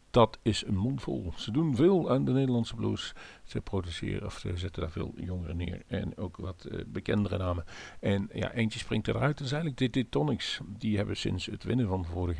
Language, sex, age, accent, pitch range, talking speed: Dutch, male, 50-69, Dutch, 85-115 Hz, 215 wpm